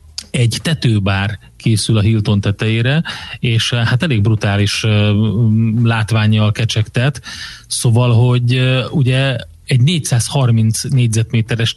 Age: 30-49